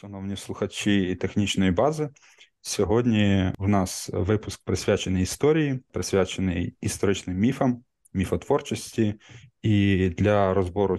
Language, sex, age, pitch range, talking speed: Ukrainian, male, 20-39, 95-110 Hz, 95 wpm